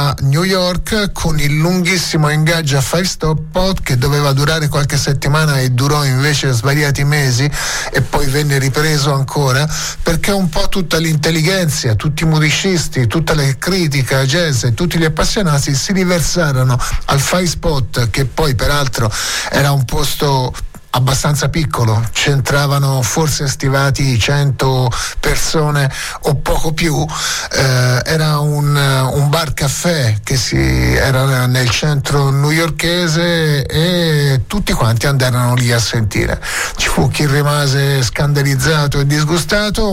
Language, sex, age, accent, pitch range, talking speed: Italian, male, 30-49, native, 135-165 Hz, 130 wpm